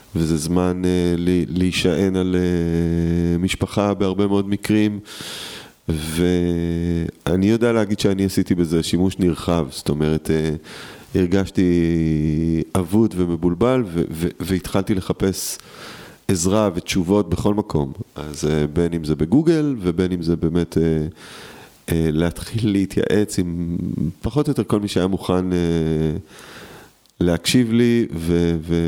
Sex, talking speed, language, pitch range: male, 125 wpm, Hebrew, 85-105 Hz